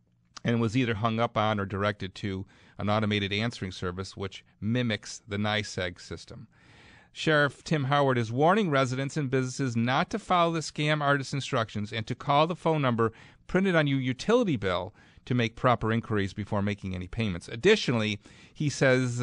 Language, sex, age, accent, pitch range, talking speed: English, male, 40-59, American, 100-135 Hz, 170 wpm